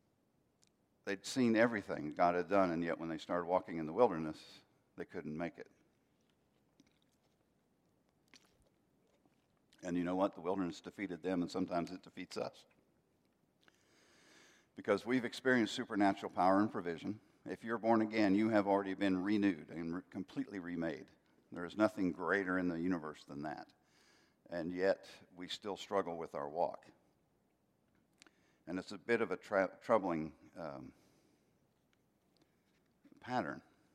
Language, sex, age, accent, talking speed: English, male, 60-79, American, 135 wpm